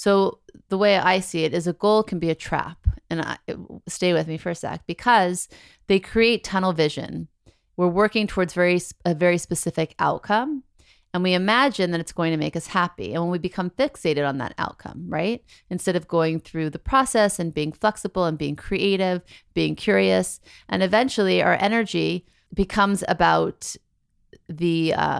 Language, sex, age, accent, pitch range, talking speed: English, female, 30-49, American, 160-195 Hz, 180 wpm